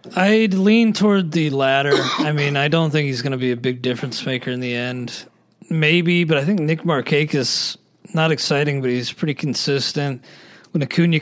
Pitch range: 130-170 Hz